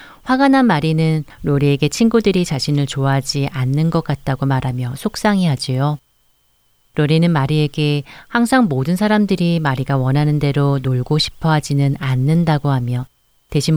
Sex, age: female, 40-59